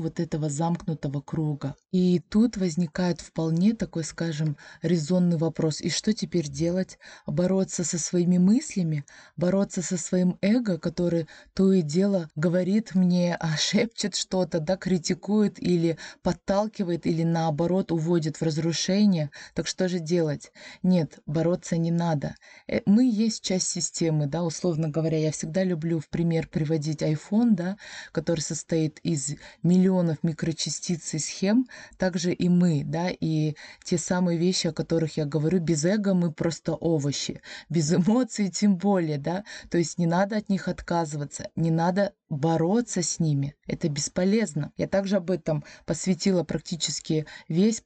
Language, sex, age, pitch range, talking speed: Russian, female, 20-39, 160-185 Hz, 145 wpm